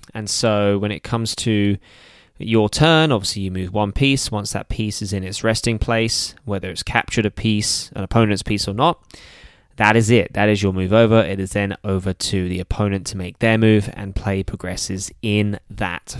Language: English